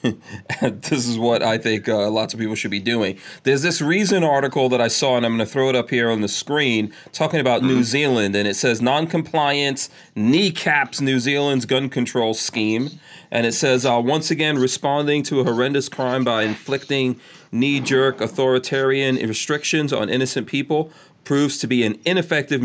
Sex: male